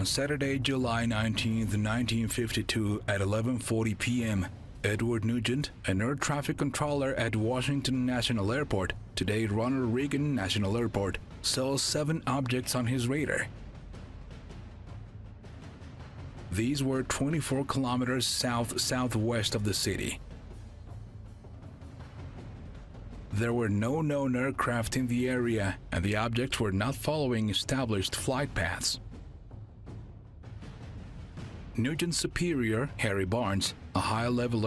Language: Hindi